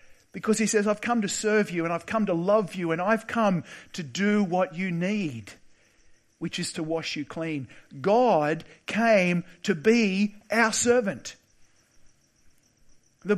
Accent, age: Australian, 50-69